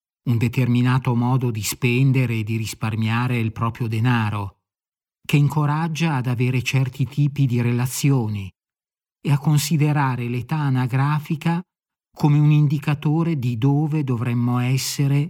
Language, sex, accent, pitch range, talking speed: Italian, male, native, 115-145 Hz, 120 wpm